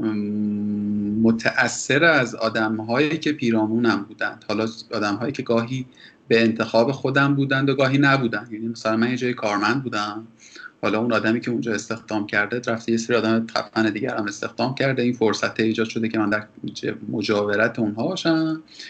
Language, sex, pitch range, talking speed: Persian, male, 110-130 Hz, 165 wpm